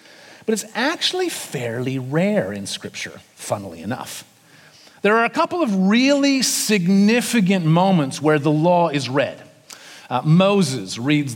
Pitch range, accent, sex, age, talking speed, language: 150-200 Hz, American, male, 40-59, 130 wpm, English